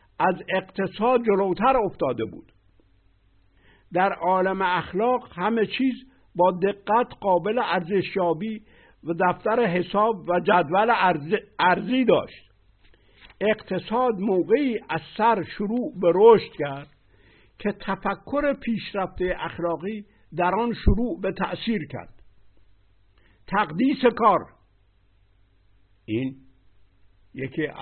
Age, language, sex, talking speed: 60-79, Persian, male, 95 wpm